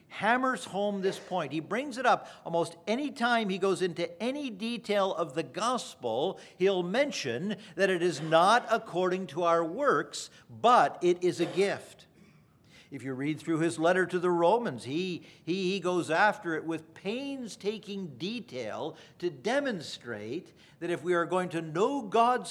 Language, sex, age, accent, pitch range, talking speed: English, male, 50-69, American, 175-230 Hz, 165 wpm